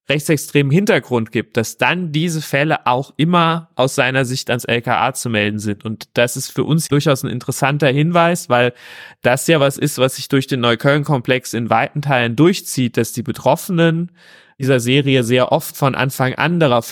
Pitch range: 120-145 Hz